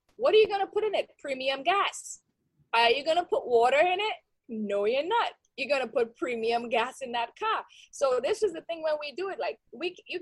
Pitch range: 235-330 Hz